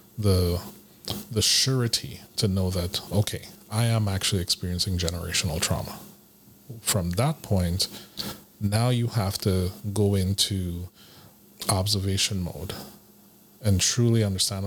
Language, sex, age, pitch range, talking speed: English, male, 30-49, 95-110 Hz, 110 wpm